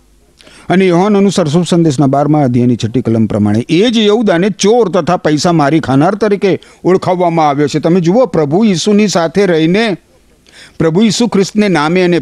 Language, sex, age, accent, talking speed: Gujarati, male, 50-69, native, 70 wpm